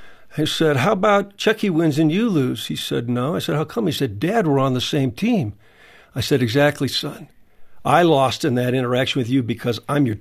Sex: male